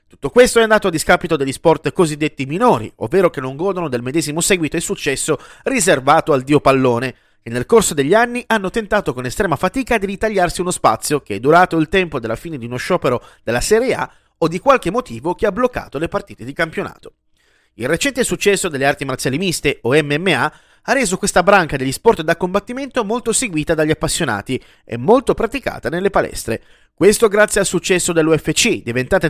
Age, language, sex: 30-49, Italian, male